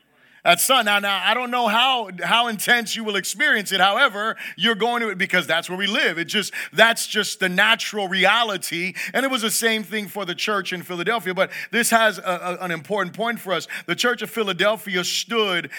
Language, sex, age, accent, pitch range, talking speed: English, male, 30-49, American, 180-215 Hz, 215 wpm